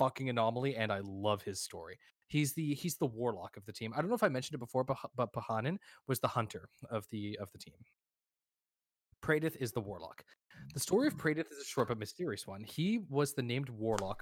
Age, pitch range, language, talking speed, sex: 20-39, 110-140 Hz, English, 220 wpm, male